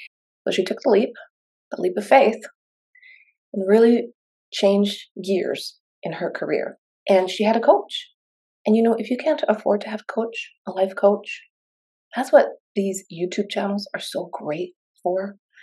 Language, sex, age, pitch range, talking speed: English, female, 30-49, 190-235 Hz, 175 wpm